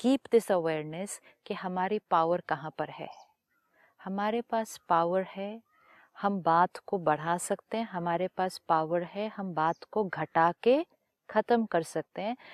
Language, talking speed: Hindi, 155 wpm